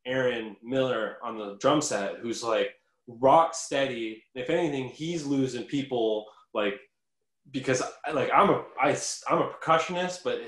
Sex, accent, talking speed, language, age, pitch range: male, American, 135 wpm, English, 20-39, 105-145 Hz